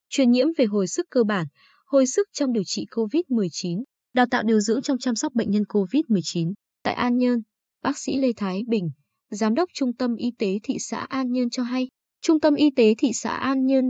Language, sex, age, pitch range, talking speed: Vietnamese, female, 20-39, 200-260 Hz, 220 wpm